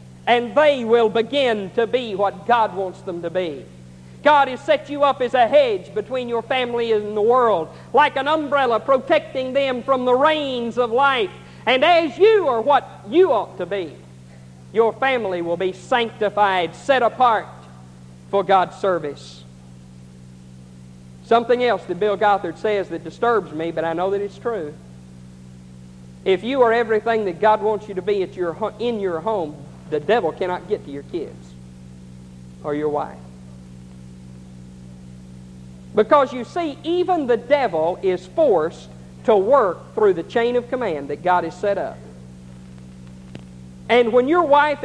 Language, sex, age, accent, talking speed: English, male, 50-69, American, 160 wpm